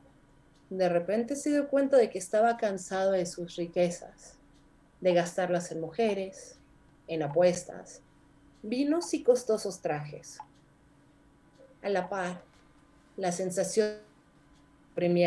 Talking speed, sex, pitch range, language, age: 110 wpm, female, 150-220 Hz, Spanish, 40-59